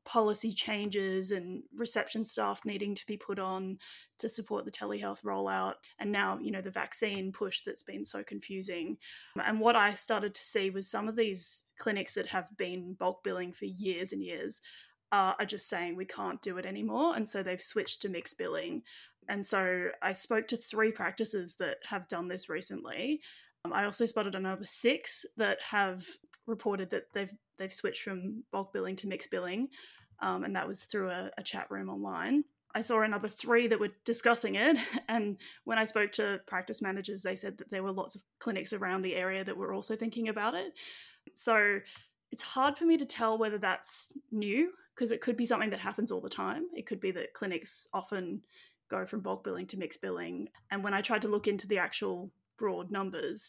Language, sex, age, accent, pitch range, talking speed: English, female, 20-39, Australian, 190-230 Hz, 200 wpm